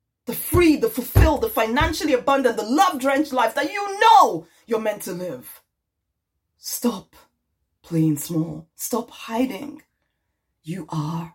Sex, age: female, 20-39